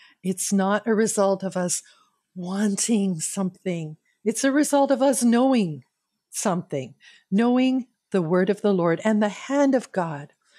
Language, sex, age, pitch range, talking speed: English, female, 50-69, 180-235 Hz, 145 wpm